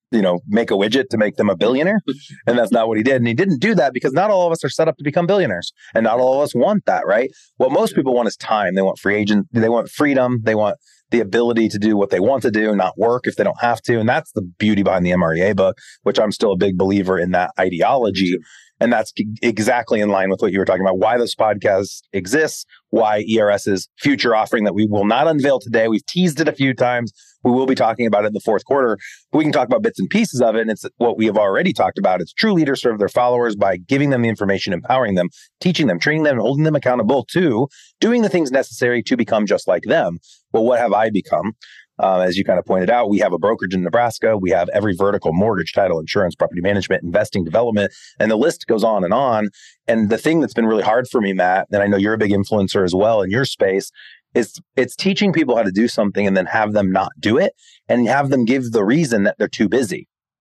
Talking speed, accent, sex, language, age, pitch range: 260 wpm, American, male, English, 30-49, 100-130 Hz